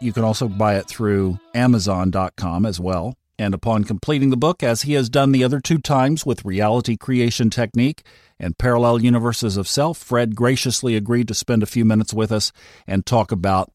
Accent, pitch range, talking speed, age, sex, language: American, 100-130 Hz, 190 wpm, 50-69, male, English